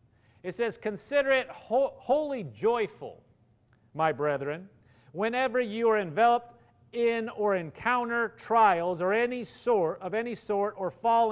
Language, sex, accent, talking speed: English, male, American, 125 wpm